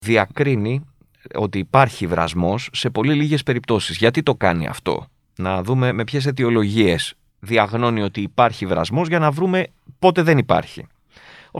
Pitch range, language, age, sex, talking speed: 110-165 Hz, Greek, 30-49, male, 145 wpm